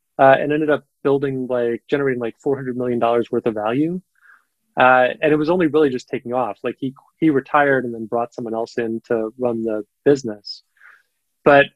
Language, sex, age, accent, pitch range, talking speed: English, male, 20-39, American, 120-150 Hz, 200 wpm